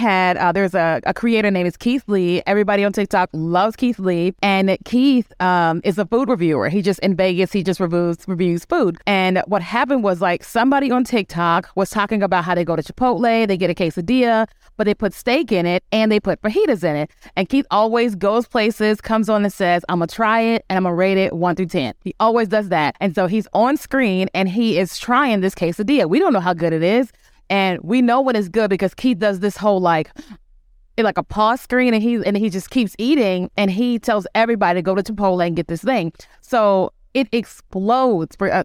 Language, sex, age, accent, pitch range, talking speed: English, female, 30-49, American, 185-230 Hz, 225 wpm